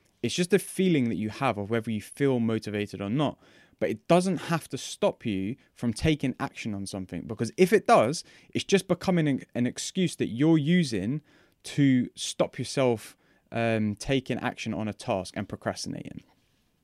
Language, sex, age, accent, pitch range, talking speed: English, male, 20-39, British, 110-155 Hz, 175 wpm